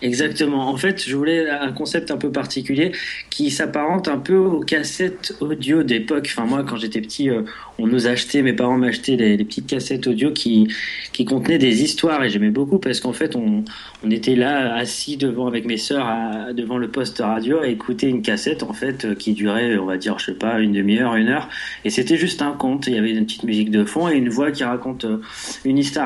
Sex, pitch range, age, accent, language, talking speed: male, 110-150 Hz, 20-39, French, French, 220 wpm